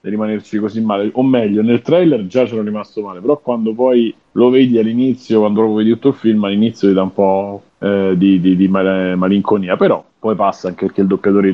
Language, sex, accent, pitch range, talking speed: Italian, male, native, 95-120 Hz, 220 wpm